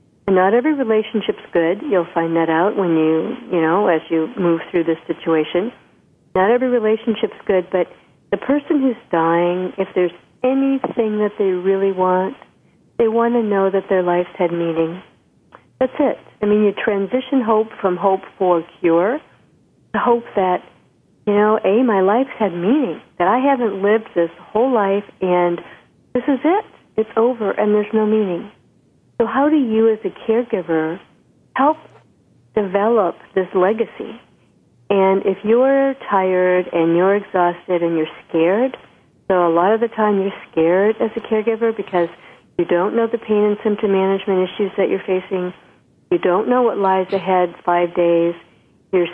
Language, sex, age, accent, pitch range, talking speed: English, female, 50-69, American, 175-225 Hz, 165 wpm